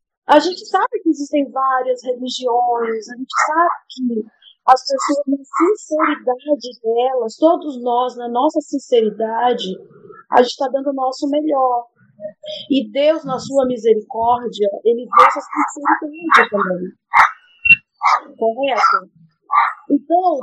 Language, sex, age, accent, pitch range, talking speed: Portuguese, female, 40-59, Brazilian, 235-305 Hz, 115 wpm